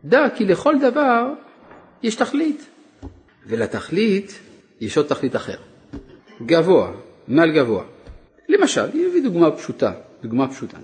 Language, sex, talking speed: Hebrew, male, 115 wpm